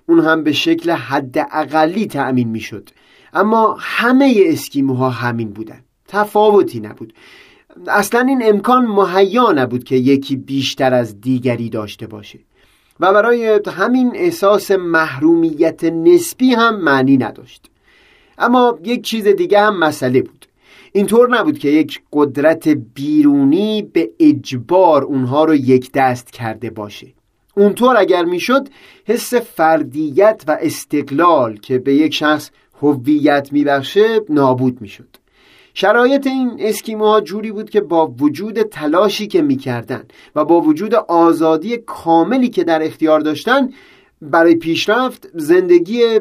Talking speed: 125 wpm